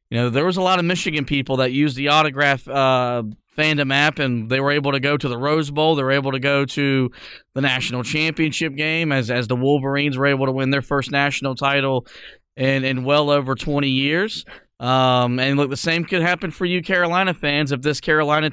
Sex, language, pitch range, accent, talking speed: male, English, 135-160 Hz, American, 220 wpm